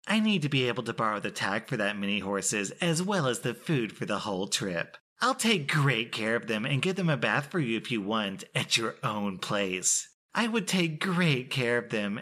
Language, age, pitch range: English, 30-49, 105-145 Hz